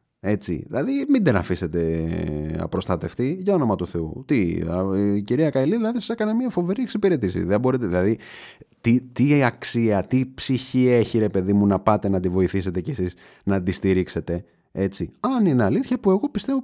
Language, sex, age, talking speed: Greek, male, 30-49, 170 wpm